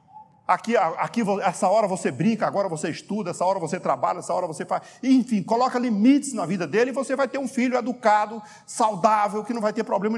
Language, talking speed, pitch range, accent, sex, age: Portuguese, 210 wpm, 180-270 Hz, Brazilian, male, 50-69